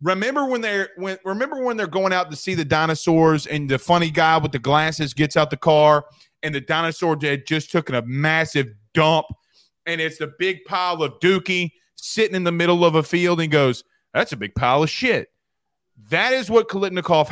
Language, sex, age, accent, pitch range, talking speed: English, male, 30-49, American, 145-180 Hz, 210 wpm